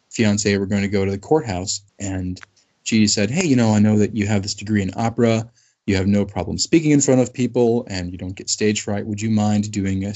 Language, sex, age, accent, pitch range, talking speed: English, male, 20-39, American, 100-110 Hz, 255 wpm